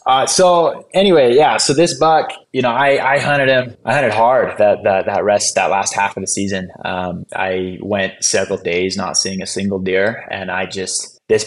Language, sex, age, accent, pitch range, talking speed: English, male, 20-39, American, 100-120 Hz, 210 wpm